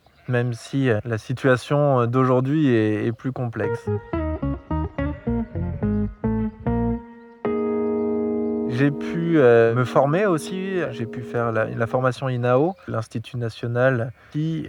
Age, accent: 20-39, French